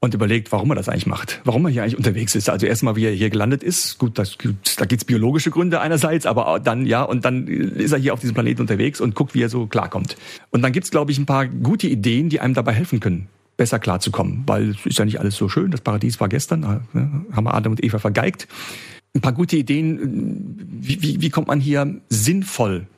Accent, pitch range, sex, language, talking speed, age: German, 110-150 Hz, male, German, 240 wpm, 40-59